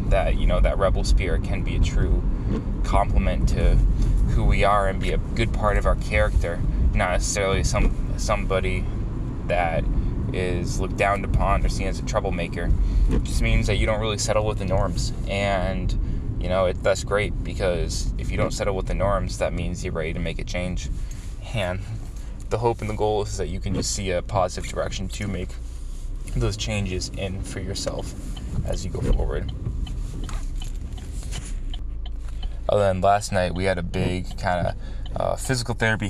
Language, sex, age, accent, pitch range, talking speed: English, male, 20-39, American, 90-105 Hz, 180 wpm